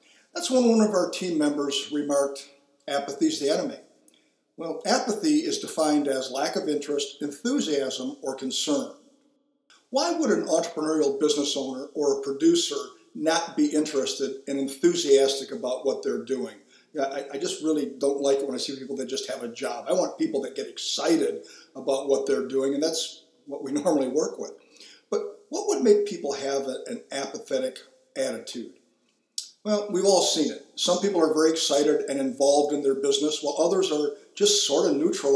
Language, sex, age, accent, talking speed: English, male, 50-69, American, 175 wpm